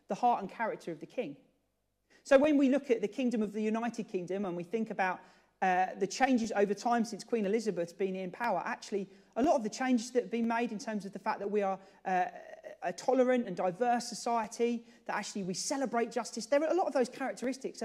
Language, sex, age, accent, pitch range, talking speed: English, male, 40-59, British, 205-265 Hz, 230 wpm